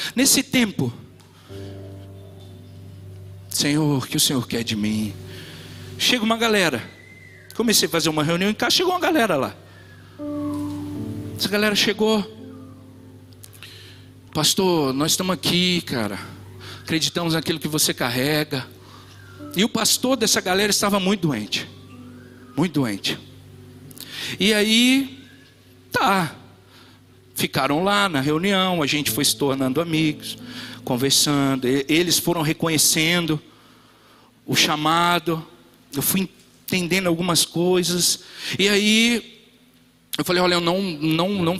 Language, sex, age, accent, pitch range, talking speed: Portuguese, male, 60-79, Brazilian, 105-180 Hz, 115 wpm